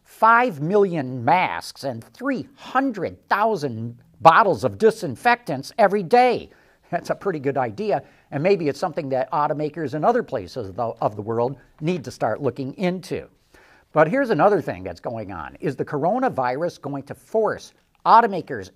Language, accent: English, American